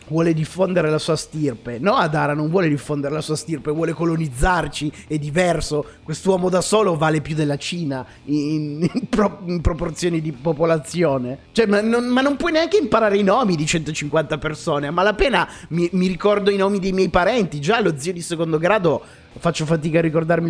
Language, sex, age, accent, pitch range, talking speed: Italian, male, 30-49, native, 145-190 Hz, 180 wpm